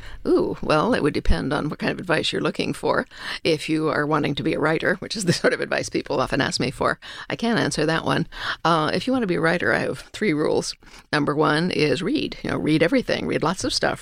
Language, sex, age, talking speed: English, female, 50-69, 260 wpm